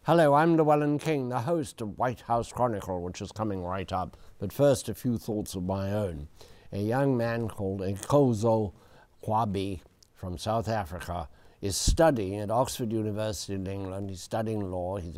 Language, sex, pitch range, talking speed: English, male, 100-135 Hz, 170 wpm